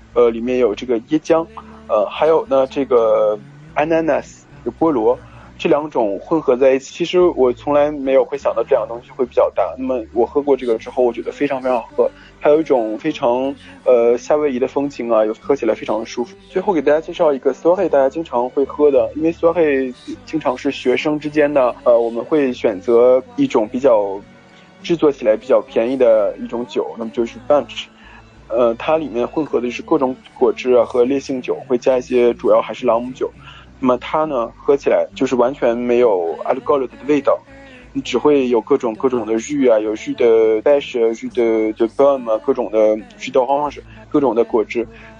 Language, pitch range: Chinese, 120-150 Hz